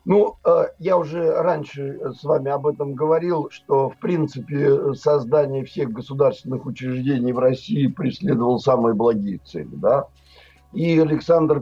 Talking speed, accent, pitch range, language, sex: 135 wpm, native, 130-160 Hz, Russian, male